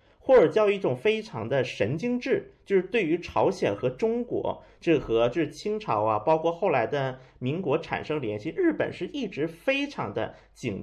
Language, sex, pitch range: Chinese, male, 165-275 Hz